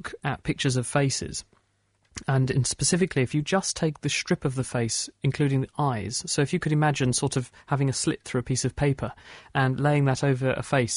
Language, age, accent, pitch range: English, 40-59, British, 125-150 Hz